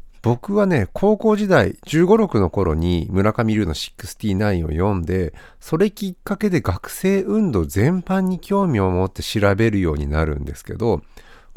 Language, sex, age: Japanese, male, 50-69